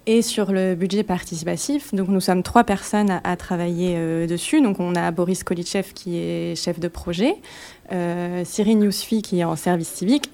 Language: French